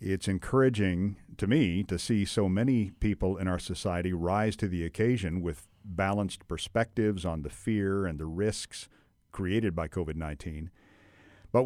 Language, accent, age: English, American, 50-69